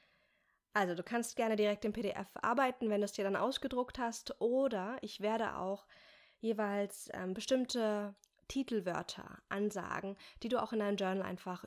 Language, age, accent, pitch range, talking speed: German, 20-39, German, 195-230 Hz, 155 wpm